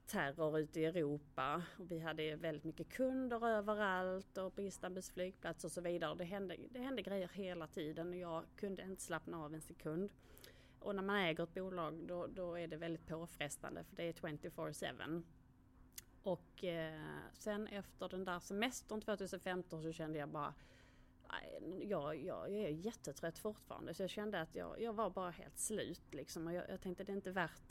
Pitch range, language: 160-195 Hz, English